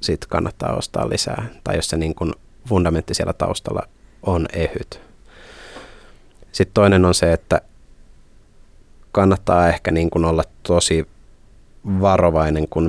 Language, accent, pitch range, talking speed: Finnish, native, 80-95 Hz, 105 wpm